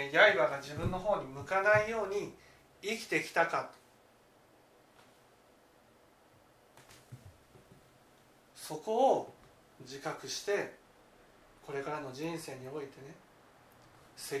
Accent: native